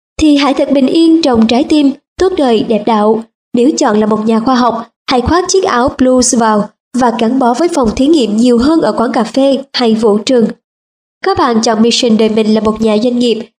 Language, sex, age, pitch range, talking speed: Vietnamese, male, 20-39, 230-280 Hz, 230 wpm